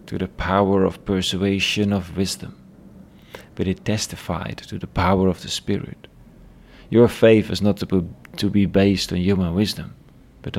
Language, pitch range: English, 90-115 Hz